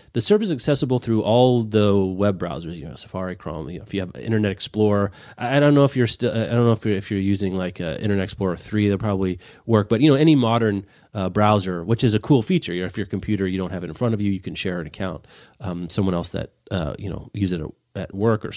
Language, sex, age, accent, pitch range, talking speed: English, male, 30-49, American, 95-125 Hz, 270 wpm